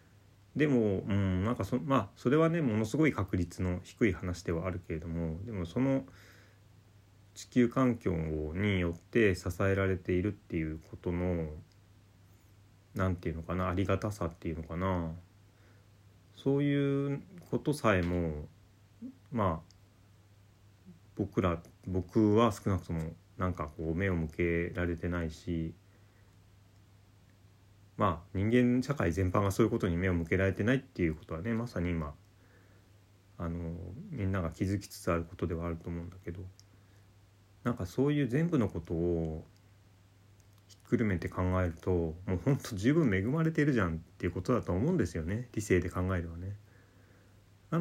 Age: 30-49